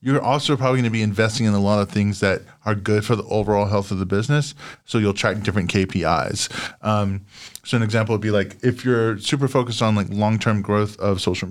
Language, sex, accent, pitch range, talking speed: English, male, American, 95-115 Hz, 230 wpm